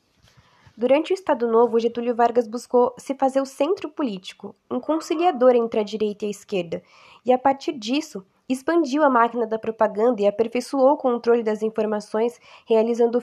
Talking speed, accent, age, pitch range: 165 wpm, Brazilian, 10-29, 220-275 Hz